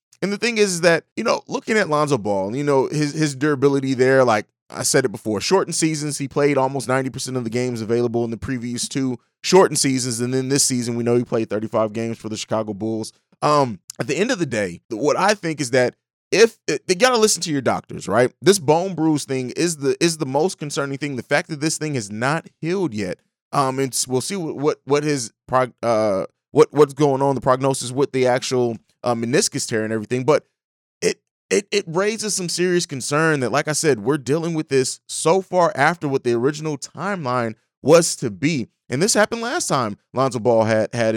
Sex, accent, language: male, American, English